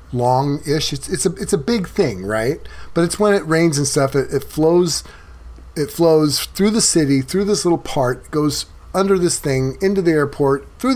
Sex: male